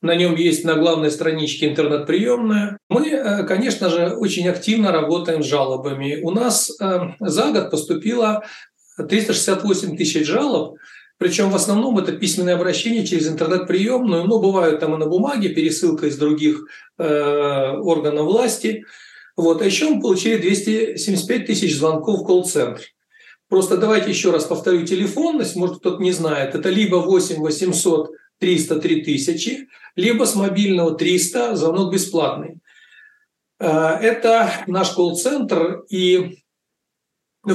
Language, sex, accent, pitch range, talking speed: Russian, male, native, 165-210 Hz, 125 wpm